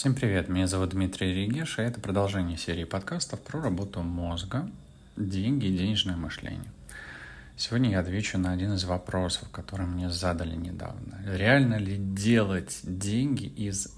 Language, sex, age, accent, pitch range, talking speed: Russian, male, 30-49, native, 95-115 Hz, 145 wpm